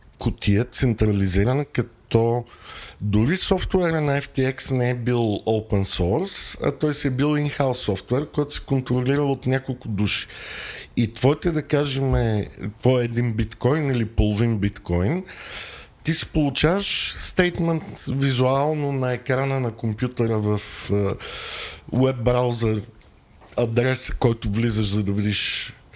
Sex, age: male, 50-69